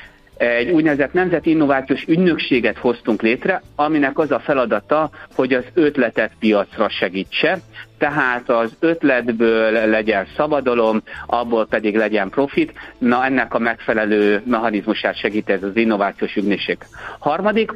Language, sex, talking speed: Hungarian, male, 120 wpm